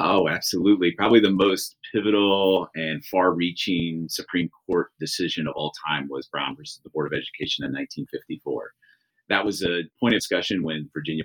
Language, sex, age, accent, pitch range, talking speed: English, male, 30-49, American, 80-95 Hz, 165 wpm